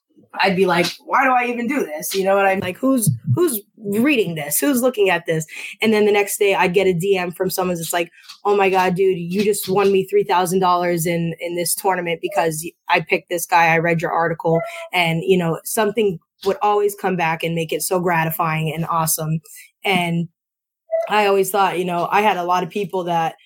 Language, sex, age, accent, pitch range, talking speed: English, female, 20-39, American, 175-210 Hz, 215 wpm